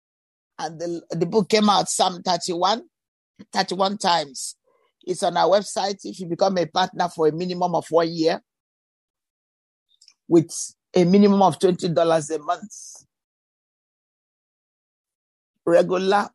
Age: 50-69